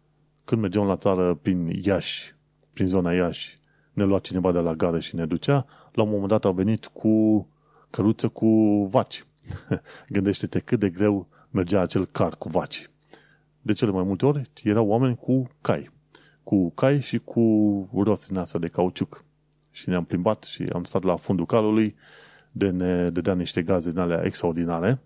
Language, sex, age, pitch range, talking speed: Romanian, male, 30-49, 90-130 Hz, 170 wpm